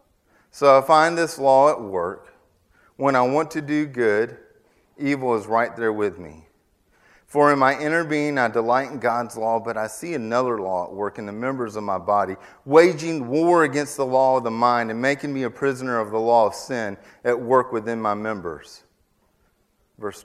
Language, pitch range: English, 110-160 Hz